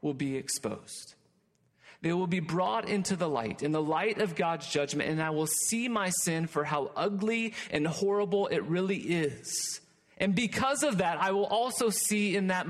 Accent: American